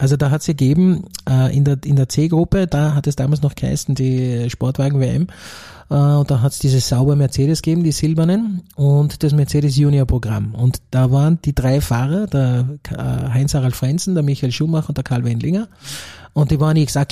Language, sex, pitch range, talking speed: German, male, 130-155 Hz, 170 wpm